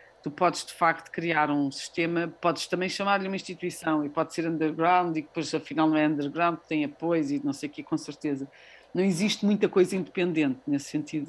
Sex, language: female, Portuguese